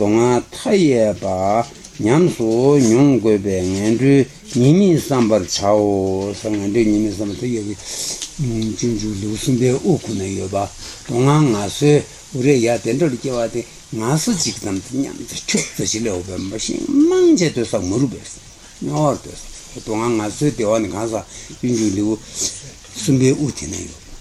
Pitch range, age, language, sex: 105-145 Hz, 60-79, Italian, male